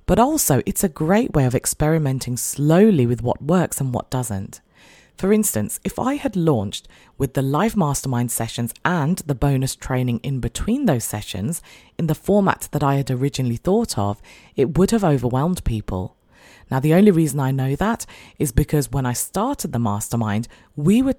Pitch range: 120-175 Hz